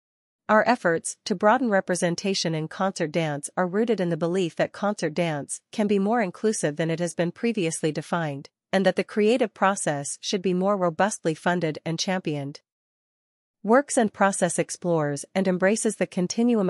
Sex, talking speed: female, 165 wpm